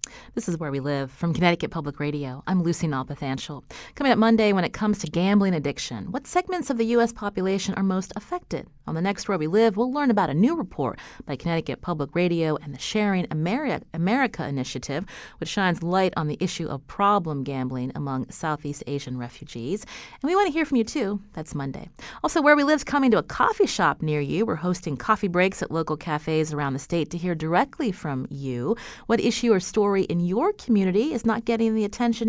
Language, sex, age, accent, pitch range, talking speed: English, female, 30-49, American, 155-230 Hz, 210 wpm